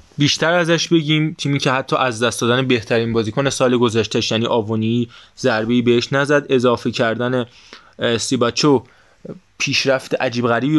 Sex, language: male, Persian